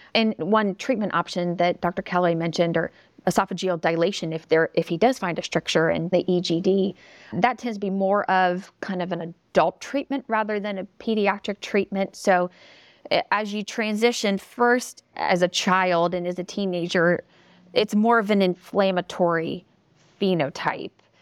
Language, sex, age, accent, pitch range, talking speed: English, female, 30-49, American, 175-210 Hz, 155 wpm